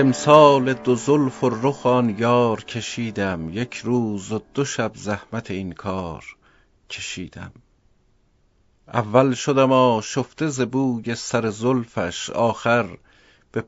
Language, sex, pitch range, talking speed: Persian, male, 100-130 Hz, 100 wpm